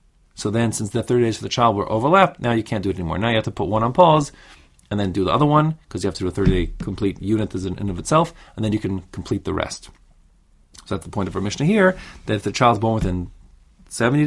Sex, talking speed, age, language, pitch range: male, 280 wpm, 30-49, English, 90-120 Hz